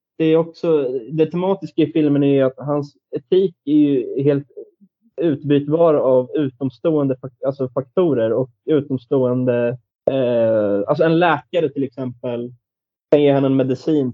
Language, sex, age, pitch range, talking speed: Swedish, male, 20-39, 125-155 Hz, 135 wpm